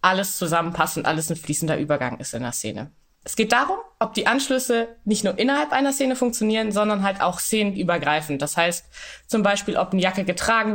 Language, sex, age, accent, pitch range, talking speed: German, female, 20-39, German, 175-230 Hz, 195 wpm